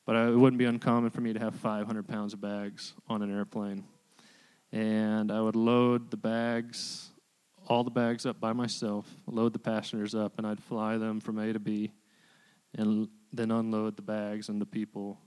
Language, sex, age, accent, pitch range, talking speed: English, male, 20-39, American, 105-120 Hz, 190 wpm